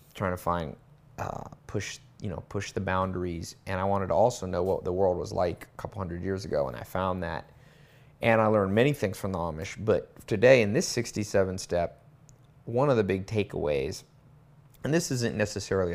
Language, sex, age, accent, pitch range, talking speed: Spanish, male, 30-49, American, 90-125 Hz, 200 wpm